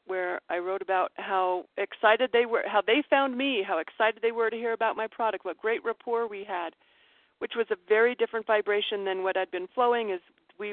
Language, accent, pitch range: English, American, 195-275 Hz